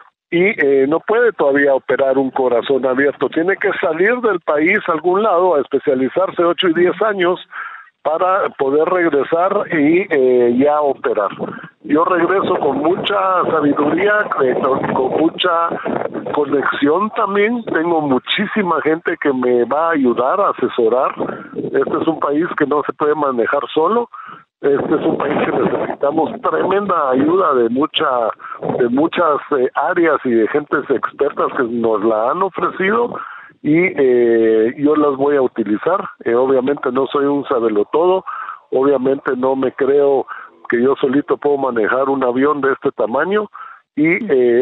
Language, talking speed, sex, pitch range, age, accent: English, 150 wpm, male, 130-190 Hz, 50-69, Mexican